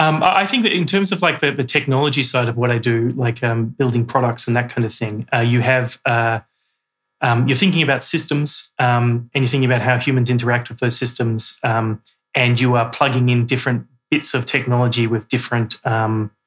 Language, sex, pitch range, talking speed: English, male, 115-130 Hz, 210 wpm